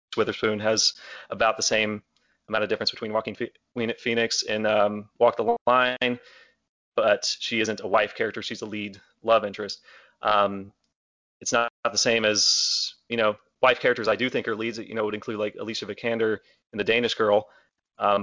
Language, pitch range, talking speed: English, 105-115 Hz, 180 wpm